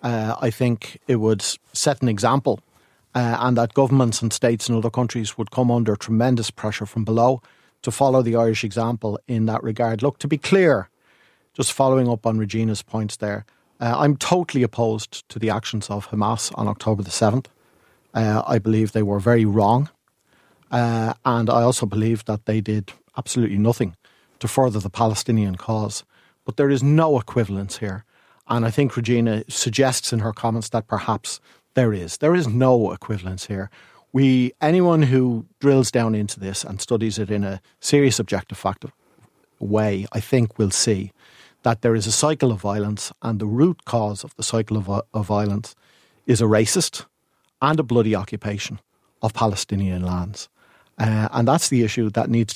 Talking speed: 180 wpm